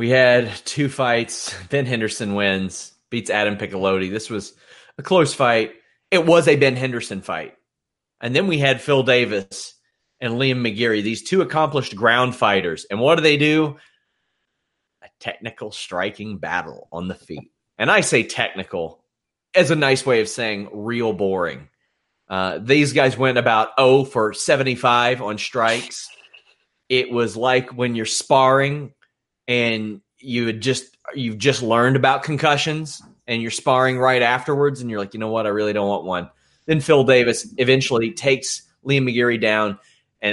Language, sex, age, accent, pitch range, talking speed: English, male, 30-49, American, 110-140 Hz, 165 wpm